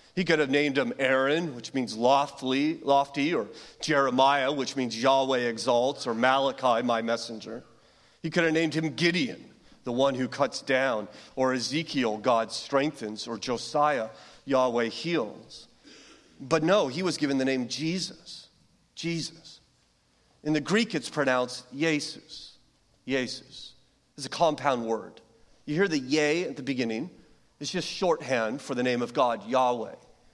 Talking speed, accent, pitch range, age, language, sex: 150 wpm, American, 130-180 Hz, 40-59, English, male